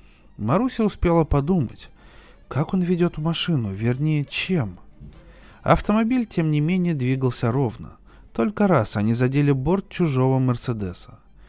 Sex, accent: male, native